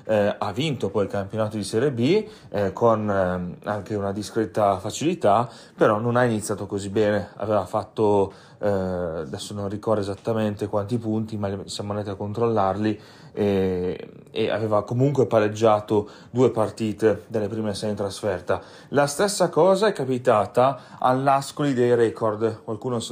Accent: native